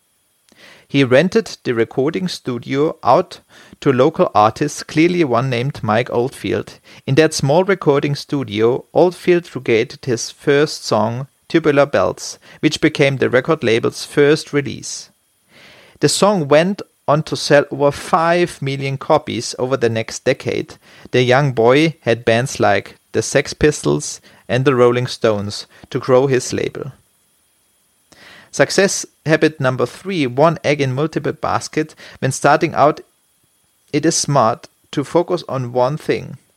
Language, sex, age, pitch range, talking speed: English, male, 40-59, 125-165 Hz, 140 wpm